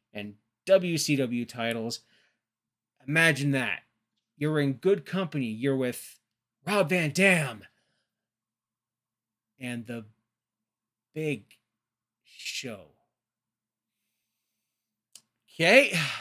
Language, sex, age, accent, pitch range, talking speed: English, male, 30-49, American, 115-160 Hz, 70 wpm